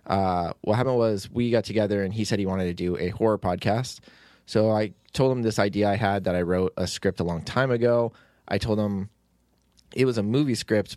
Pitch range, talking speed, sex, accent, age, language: 90-115 Hz, 230 wpm, male, American, 20-39, English